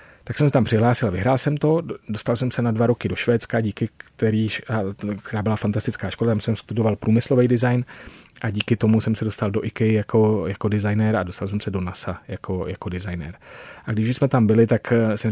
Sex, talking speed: male, 210 wpm